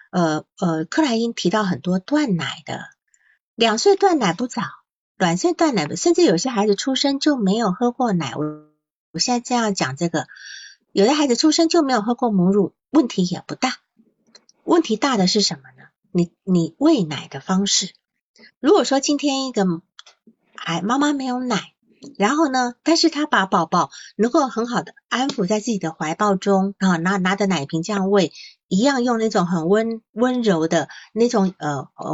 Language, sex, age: Chinese, female, 50-69